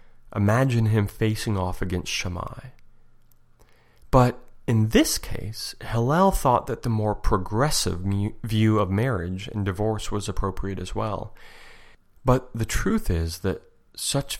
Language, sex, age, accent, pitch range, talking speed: English, male, 30-49, American, 95-115 Hz, 130 wpm